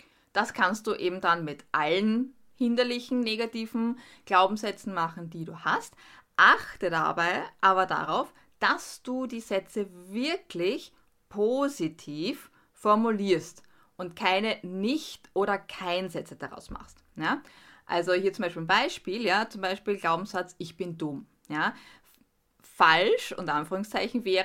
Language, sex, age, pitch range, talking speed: German, female, 20-39, 165-215 Hz, 125 wpm